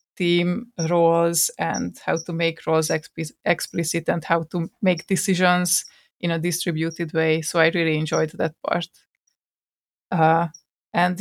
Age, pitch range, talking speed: 20-39, 165-185 Hz, 135 wpm